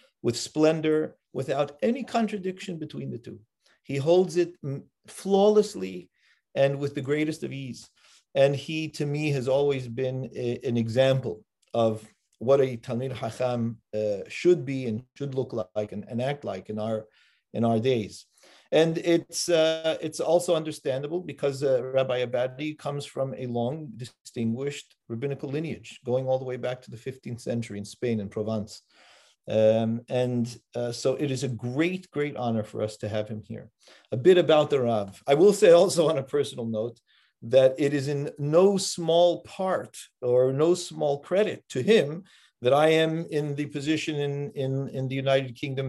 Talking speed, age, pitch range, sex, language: 175 wpm, 40-59, 115-155 Hz, male, English